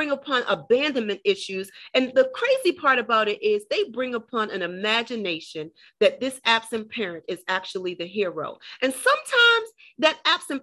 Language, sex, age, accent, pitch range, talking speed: English, female, 40-59, American, 205-270 Hz, 150 wpm